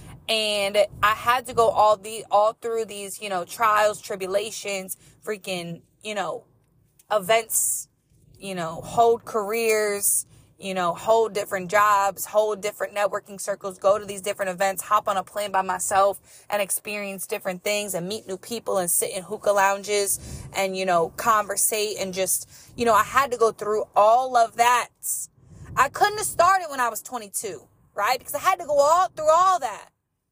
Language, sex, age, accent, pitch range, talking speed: English, female, 20-39, American, 195-240 Hz, 175 wpm